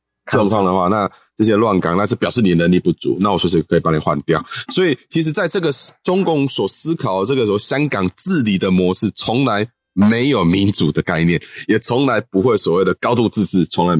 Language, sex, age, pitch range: Chinese, male, 20-39, 90-120 Hz